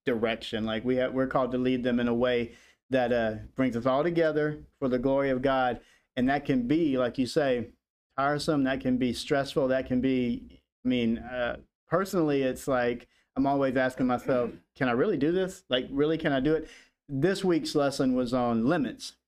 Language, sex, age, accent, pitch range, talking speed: English, male, 40-59, American, 125-150 Hz, 200 wpm